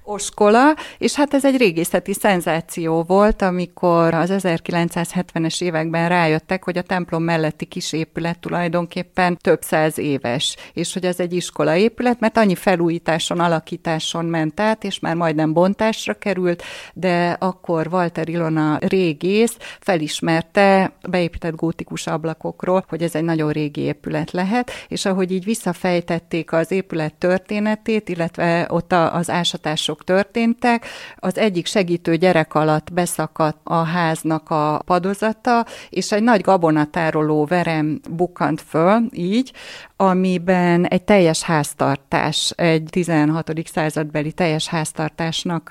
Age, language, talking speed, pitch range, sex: 30-49, Hungarian, 120 wpm, 160-185 Hz, female